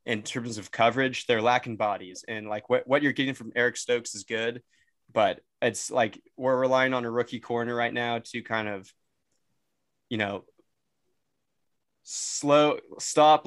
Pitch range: 115-135 Hz